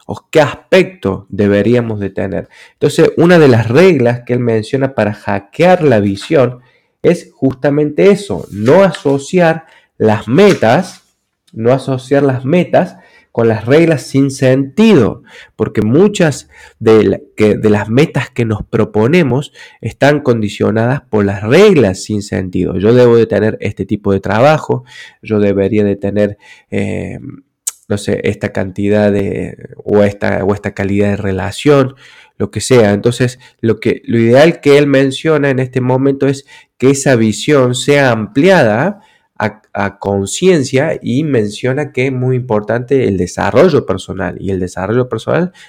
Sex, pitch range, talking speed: male, 100-135 Hz, 145 wpm